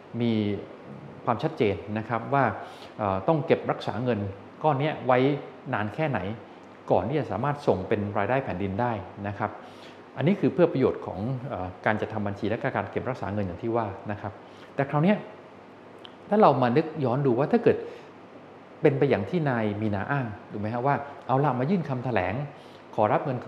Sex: male